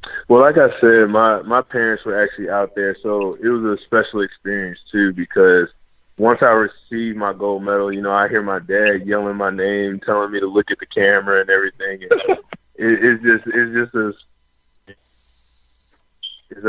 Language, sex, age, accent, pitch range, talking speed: English, male, 20-39, American, 95-115 Hz, 185 wpm